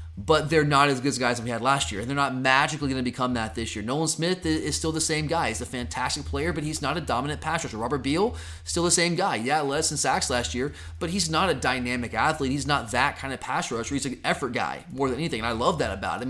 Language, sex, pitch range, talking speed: English, male, 120-155 Hz, 285 wpm